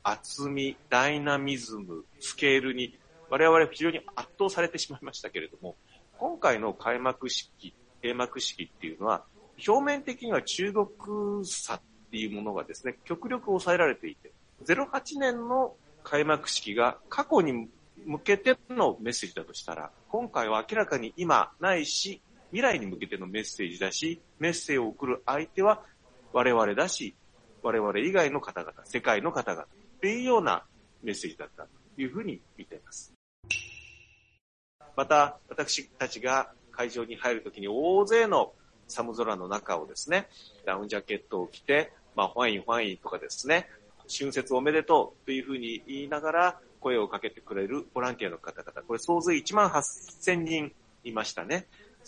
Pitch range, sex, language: 130-195 Hz, male, Japanese